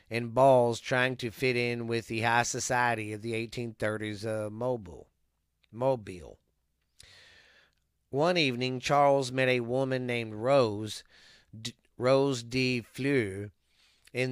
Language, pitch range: English, 110-130 Hz